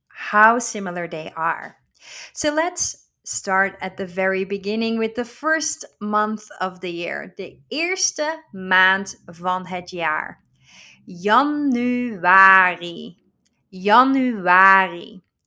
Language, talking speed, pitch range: Dutch, 100 wpm, 175-220 Hz